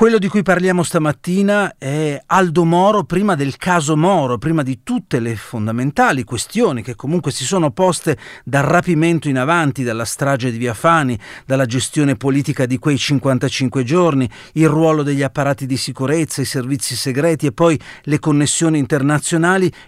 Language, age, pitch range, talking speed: Italian, 40-59, 120-150 Hz, 160 wpm